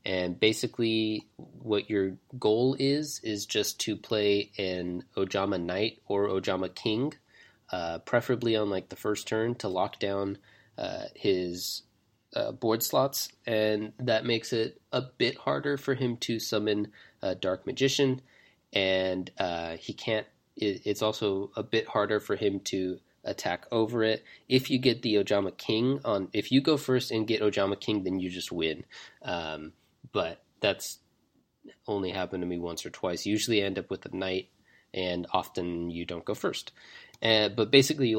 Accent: American